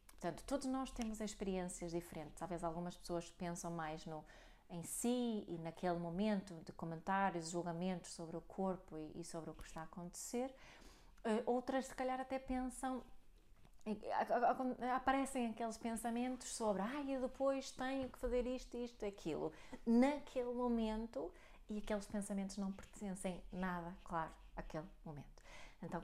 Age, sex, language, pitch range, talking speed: 30-49, female, Portuguese, 175-230 Hz, 145 wpm